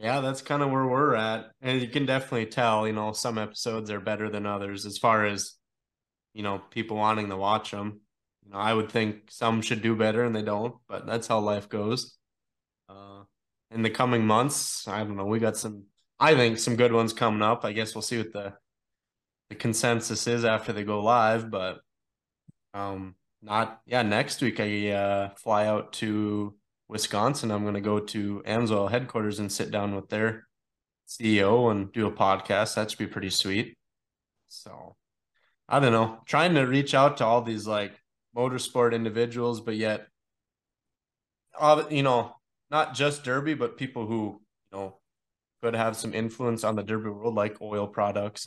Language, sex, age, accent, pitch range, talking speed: English, male, 20-39, American, 105-120 Hz, 185 wpm